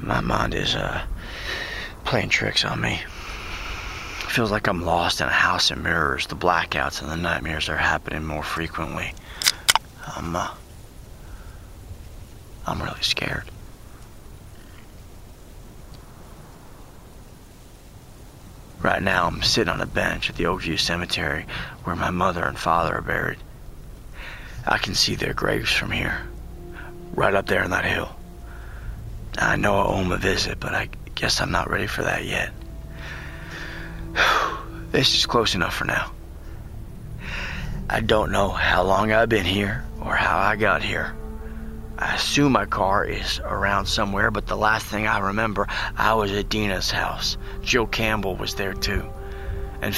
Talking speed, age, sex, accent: 145 wpm, 30-49, male, American